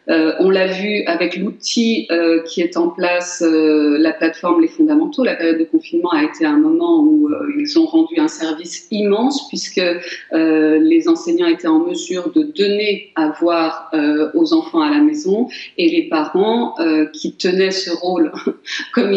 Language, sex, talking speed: French, female, 180 wpm